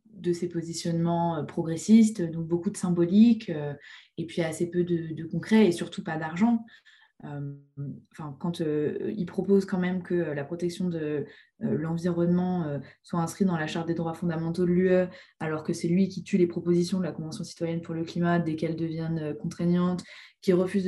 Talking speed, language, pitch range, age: 175 wpm, French, 170-190 Hz, 20-39